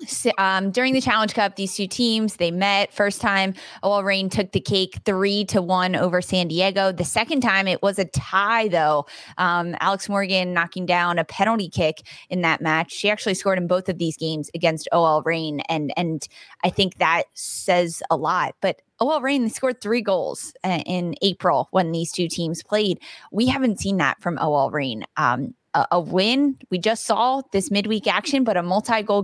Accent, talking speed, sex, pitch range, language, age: American, 195 wpm, female, 165-200 Hz, English, 20-39